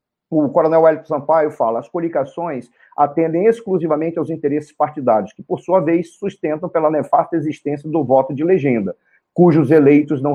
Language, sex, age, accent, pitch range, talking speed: Portuguese, male, 40-59, Brazilian, 145-175 Hz, 155 wpm